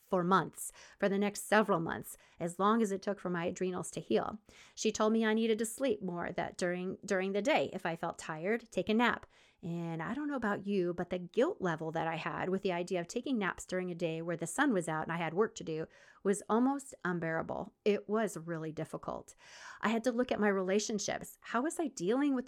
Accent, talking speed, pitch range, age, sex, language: American, 240 wpm, 175-215 Hz, 40-59, female, English